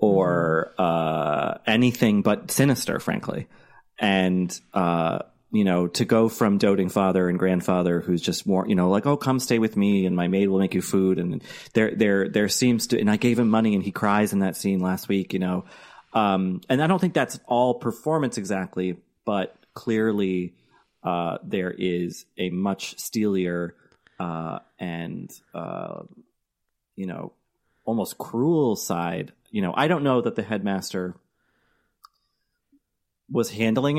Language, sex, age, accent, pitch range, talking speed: English, male, 30-49, American, 90-110 Hz, 160 wpm